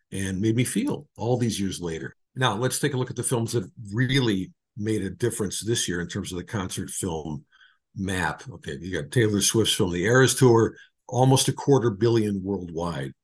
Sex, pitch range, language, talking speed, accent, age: male, 100-130 Hz, English, 200 wpm, American, 50-69